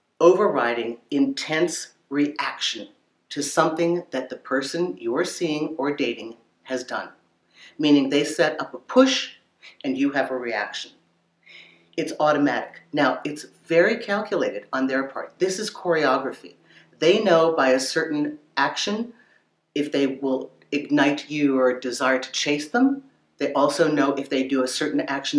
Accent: American